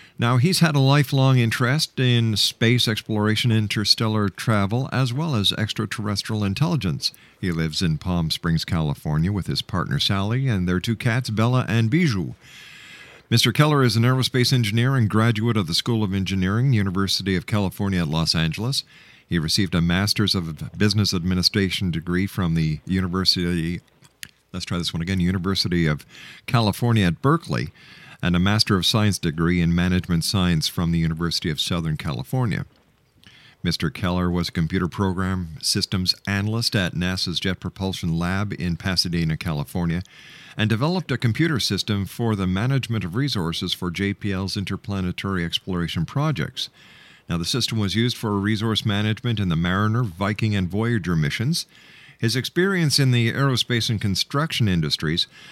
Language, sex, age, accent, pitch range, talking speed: English, male, 50-69, American, 90-120 Hz, 155 wpm